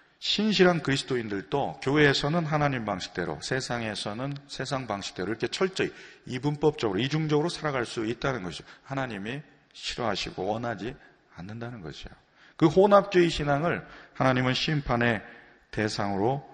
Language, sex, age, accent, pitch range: Korean, male, 40-59, native, 105-145 Hz